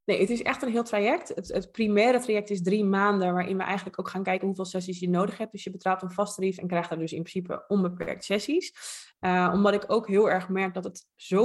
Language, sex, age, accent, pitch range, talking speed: Dutch, female, 20-39, Dutch, 175-205 Hz, 255 wpm